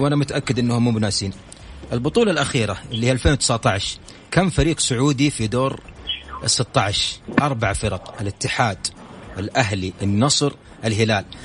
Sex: male